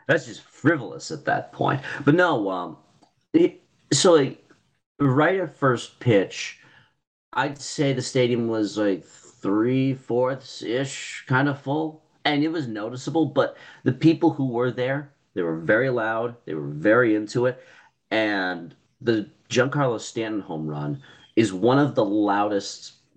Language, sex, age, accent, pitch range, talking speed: English, male, 40-59, American, 90-130 Hz, 145 wpm